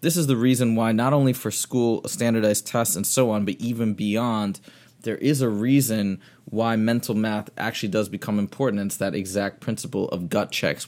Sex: male